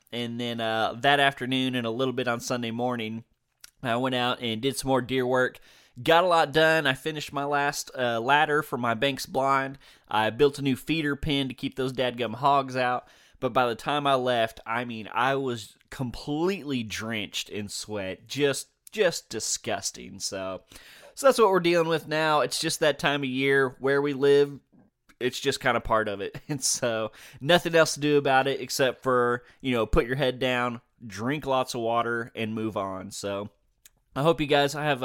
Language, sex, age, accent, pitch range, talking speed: English, male, 20-39, American, 115-145 Hz, 200 wpm